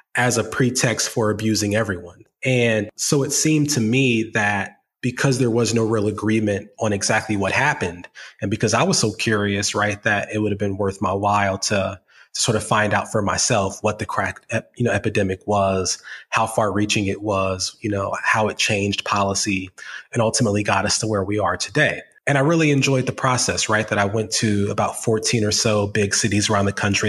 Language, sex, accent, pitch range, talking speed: English, male, American, 100-110 Hz, 205 wpm